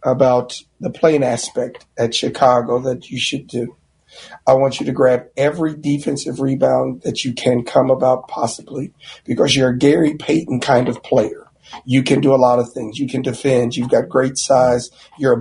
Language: English